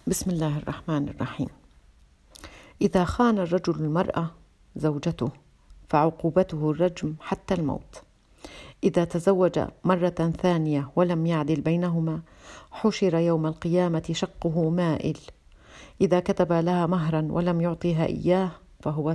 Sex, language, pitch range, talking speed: female, Arabic, 150-180 Hz, 105 wpm